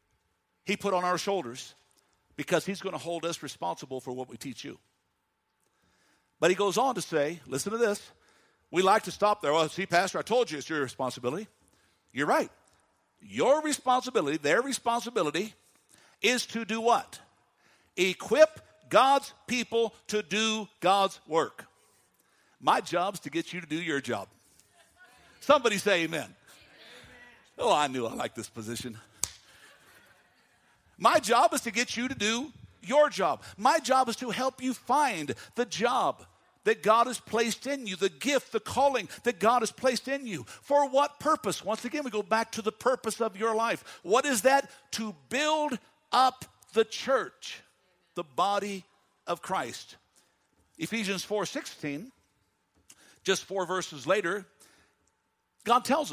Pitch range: 175-250 Hz